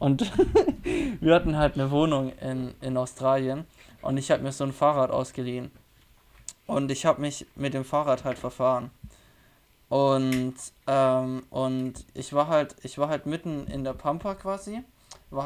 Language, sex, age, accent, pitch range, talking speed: German, male, 20-39, German, 130-150 Hz, 160 wpm